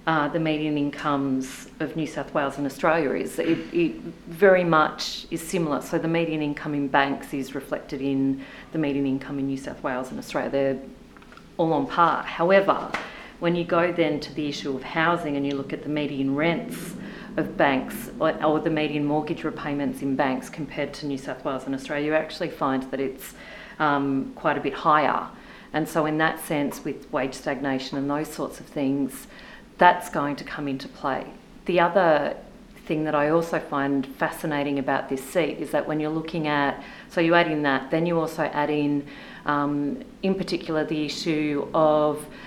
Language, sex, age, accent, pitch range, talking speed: English, female, 40-59, Australian, 145-165 Hz, 190 wpm